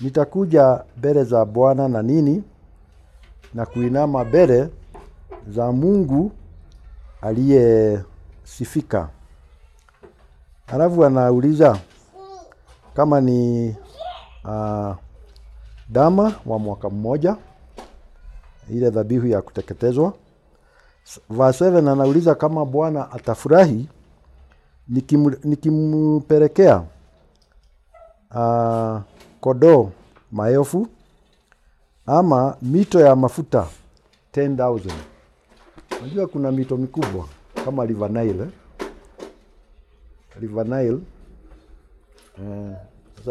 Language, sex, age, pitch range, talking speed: Swahili, male, 50-69, 95-135 Hz, 70 wpm